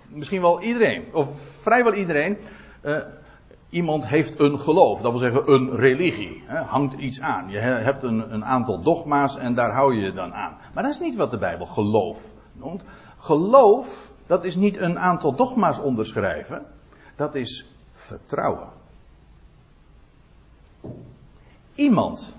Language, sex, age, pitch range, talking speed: Dutch, male, 60-79, 125-205 Hz, 140 wpm